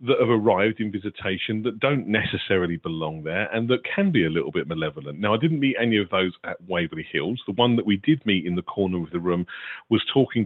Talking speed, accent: 240 wpm, British